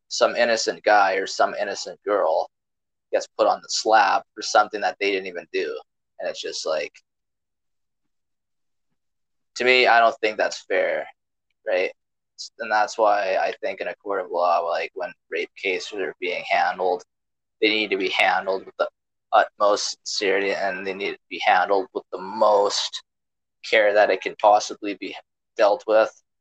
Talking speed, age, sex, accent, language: 170 wpm, 20-39, male, American, English